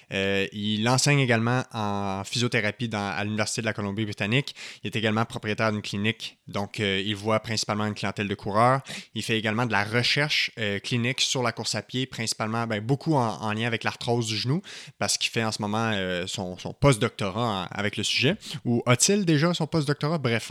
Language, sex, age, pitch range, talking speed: French, male, 20-39, 105-130 Hz, 200 wpm